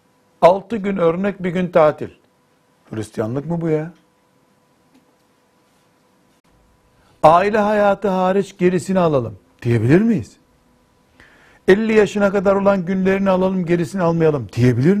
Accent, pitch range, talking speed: native, 135-195 Hz, 105 wpm